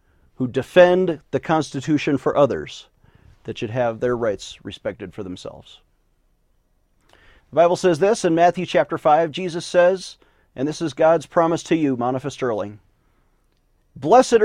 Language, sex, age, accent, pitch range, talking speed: English, male, 40-59, American, 140-195 Hz, 140 wpm